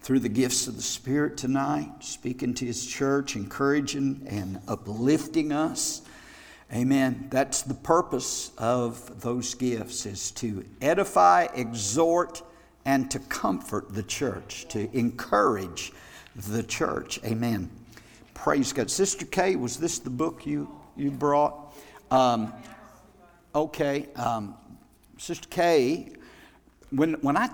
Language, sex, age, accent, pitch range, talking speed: English, male, 60-79, American, 110-135 Hz, 120 wpm